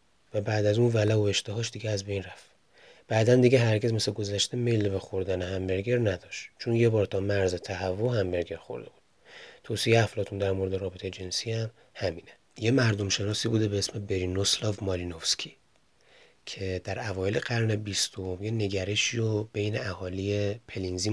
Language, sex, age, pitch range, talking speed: Persian, male, 30-49, 95-115 Hz, 160 wpm